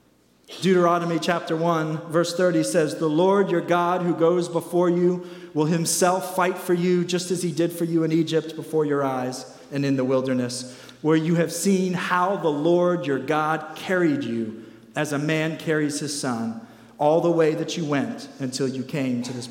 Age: 40-59